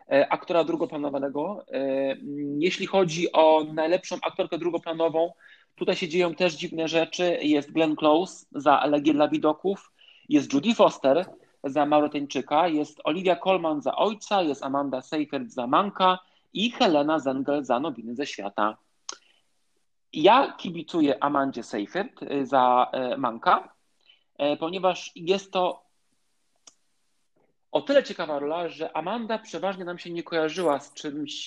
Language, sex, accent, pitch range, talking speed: Polish, male, native, 145-185 Hz, 125 wpm